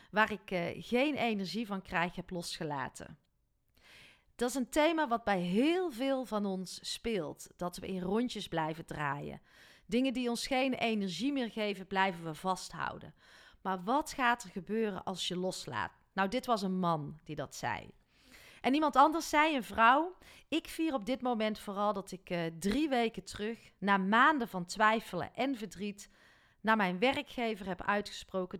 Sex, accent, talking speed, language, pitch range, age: female, Dutch, 170 wpm, Dutch, 185-235 Hz, 40-59